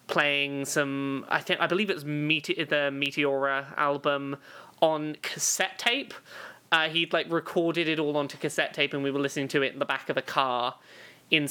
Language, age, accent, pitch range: English, 20-39, British, 140-180 Hz